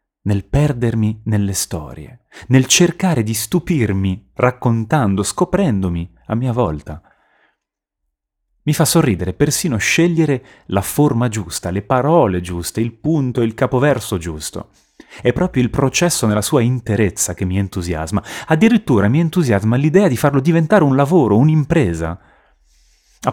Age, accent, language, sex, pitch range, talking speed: 30-49, native, Italian, male, 85-120 Hz, 130 wpm